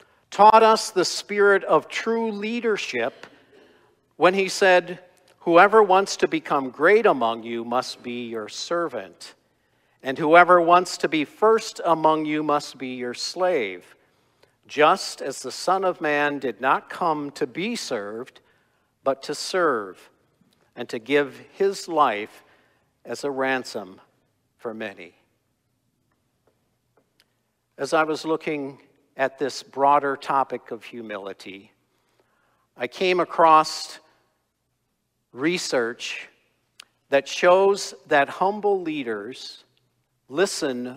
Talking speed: 115 wpm